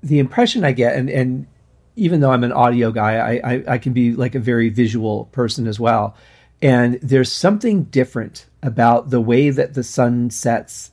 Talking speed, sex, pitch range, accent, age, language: 190 wpm, male, 110-135 Hz, American, 40-59, English